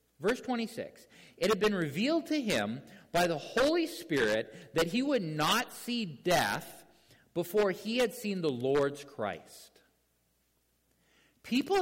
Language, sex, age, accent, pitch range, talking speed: English, male, 50-69, American, 145-225 Hz, 130 wpm